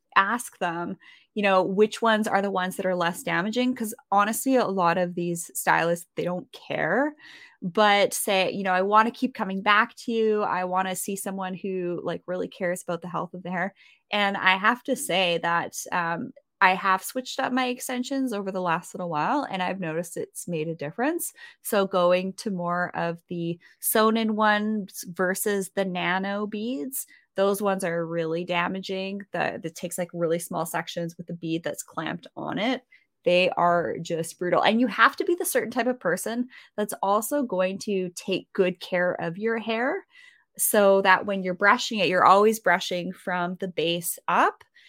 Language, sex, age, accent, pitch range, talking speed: English, female, 20-39, American, 180-220 Hz, 195 wpm